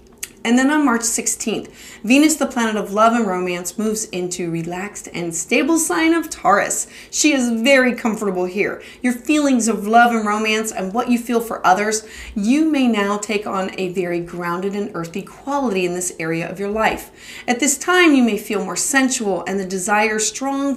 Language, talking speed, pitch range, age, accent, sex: English, 190 wpm, 195-260 Hz, 30-49, American, female